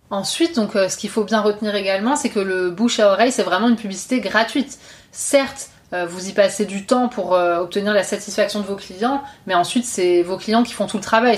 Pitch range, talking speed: 195-230 Hz, 225 wpm